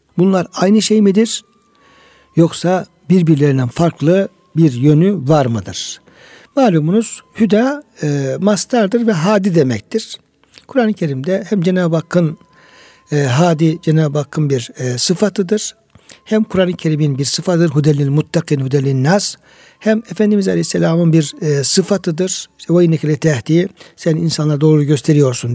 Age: 60-79